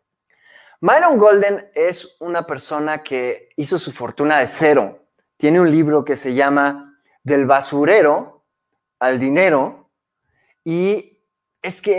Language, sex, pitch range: Spanish, male, 140-195 Hz